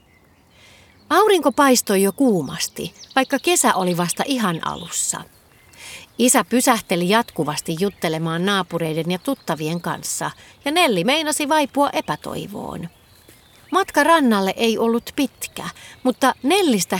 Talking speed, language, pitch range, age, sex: 105 wpm, Finnish, 165-270 Hz, 40-59, female